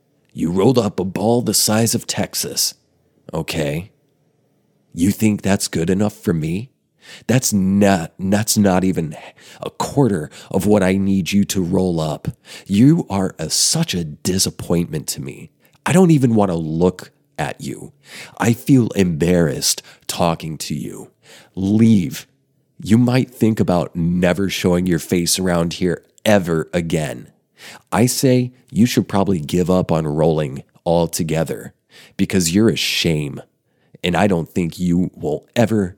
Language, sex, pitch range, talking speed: English, male, 90-115 Hz, 145 wpm